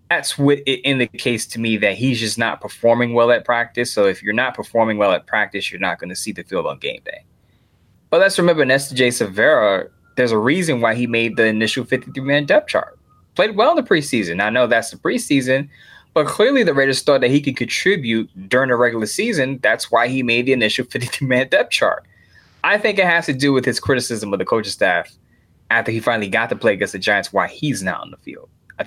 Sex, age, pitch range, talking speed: male, 20-39, 110-135 Hz, 230 wpm